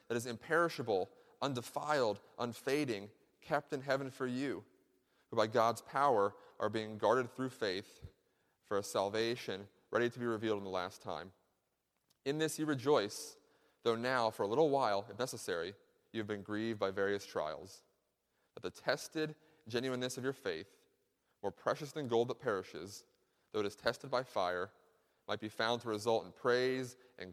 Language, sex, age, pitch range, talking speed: English, male, 30-49, 105-130 Hz, 165 wpm